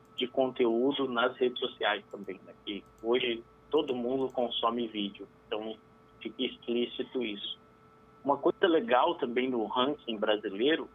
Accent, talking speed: Brazilian, 130 wpm